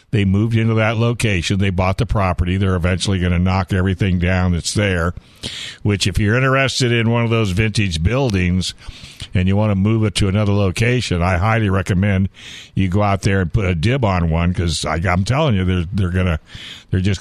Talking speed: 205 wpm